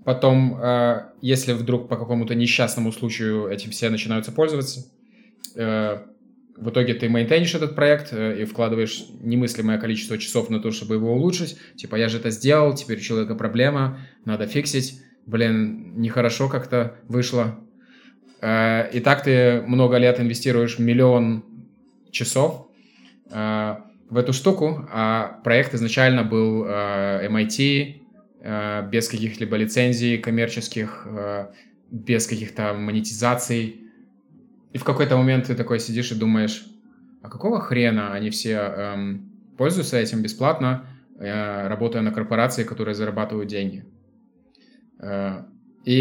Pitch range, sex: 110-140 Hz, male